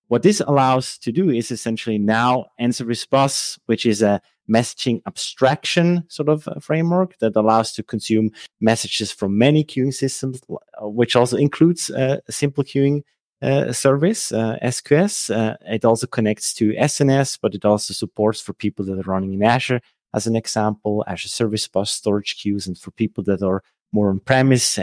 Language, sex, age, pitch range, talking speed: English, male, 30-49, 105-125 Hz, 170 wpm